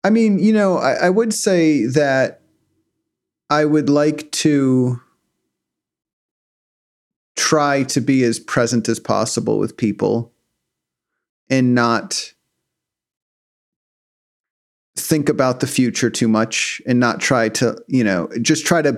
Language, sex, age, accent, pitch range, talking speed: English, male, 40-59, American, 115-145 Hz, 125 wpm